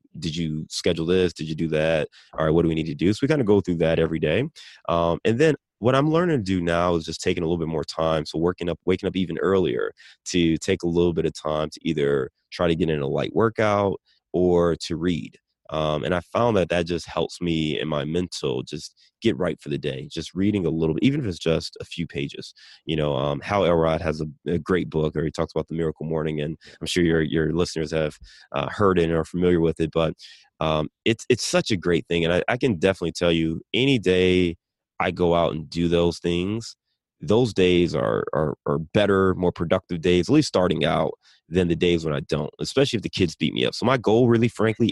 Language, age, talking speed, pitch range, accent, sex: English, 20-39, 245 wpm, 80-100 Hz, American, male